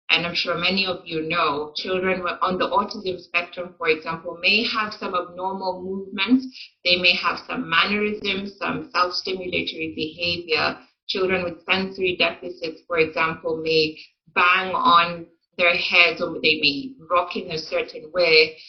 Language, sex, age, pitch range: English, female, 30-49, 170-215 Hz